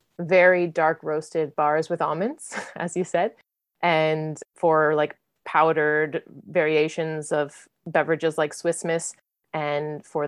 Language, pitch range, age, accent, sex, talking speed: English, 155-185 Hz, 20-39, American, female, 125 wpm